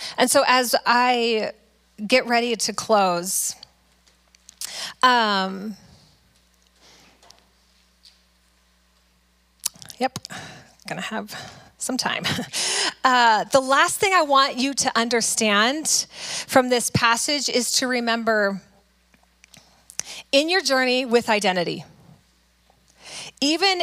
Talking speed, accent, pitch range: 90 wpm, American, 185-255 Hz